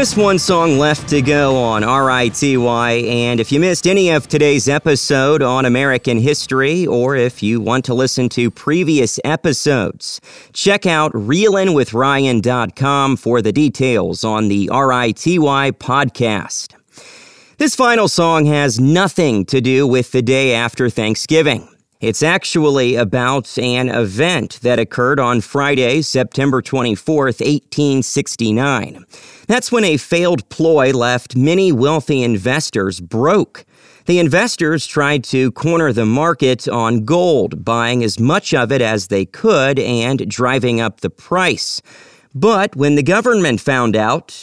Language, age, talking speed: English, 40-59, 135 wpm